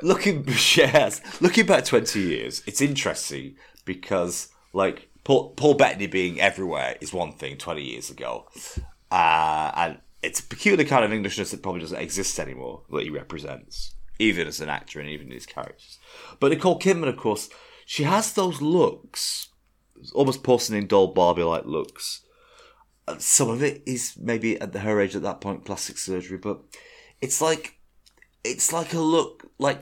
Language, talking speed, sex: English, 165 wpm, male